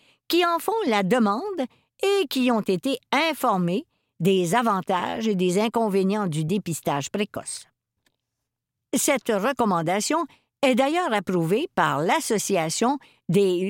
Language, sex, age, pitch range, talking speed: French, female, 50-69, 180-260 Hz, 115 wpm